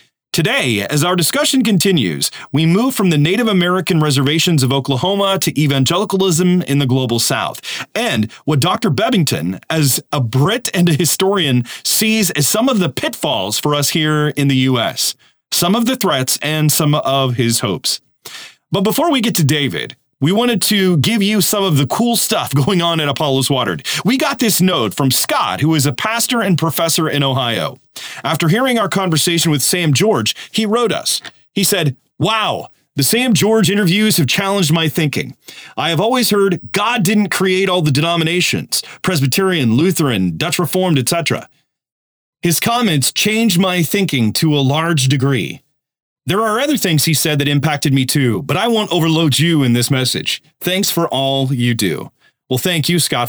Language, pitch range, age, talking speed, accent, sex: English, 140-195 Hz, 30-49, 180 wpm, American, male